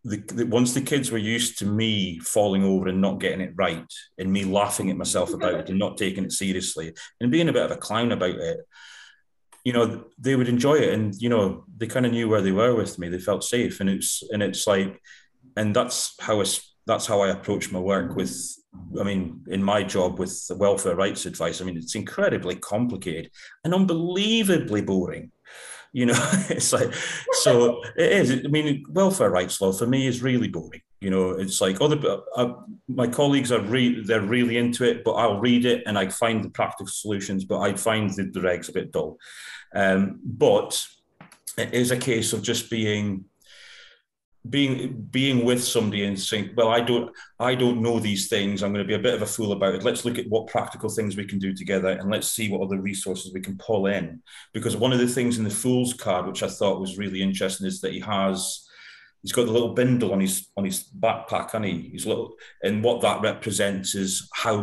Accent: British